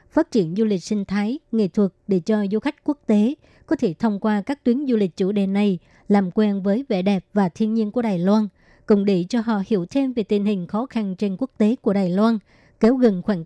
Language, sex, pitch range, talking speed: Vietnamese, male, 200-235 Hz, 250 wpm